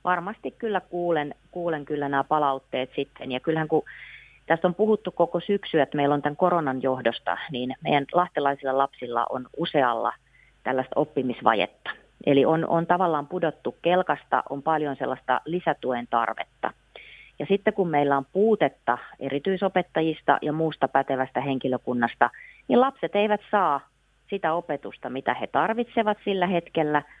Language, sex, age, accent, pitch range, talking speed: Finnish, female, 30-49, native, 130-170 Hz, 140 wpm